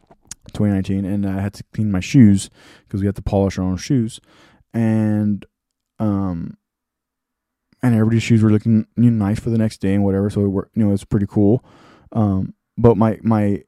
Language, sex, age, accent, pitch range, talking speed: English, male, 20-39, American, 100-120 Hz, 200 wpm